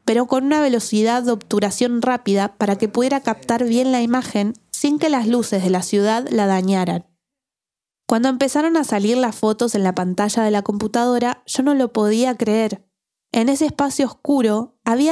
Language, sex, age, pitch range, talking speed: Spanish, female, 20-39, 200-250 Hz, 180 wpm